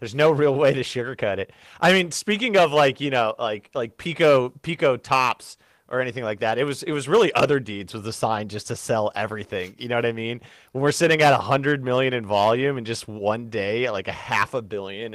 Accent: American